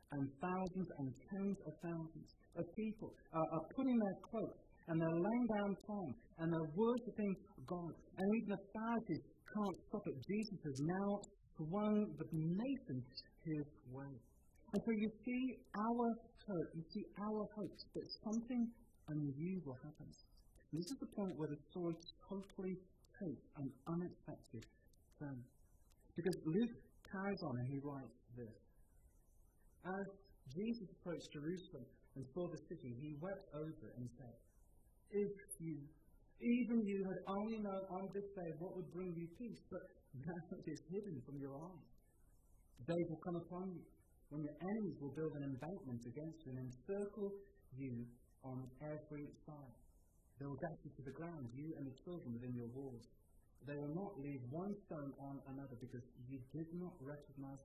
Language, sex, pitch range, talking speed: English, female, 135-195 Hz, 160 wpm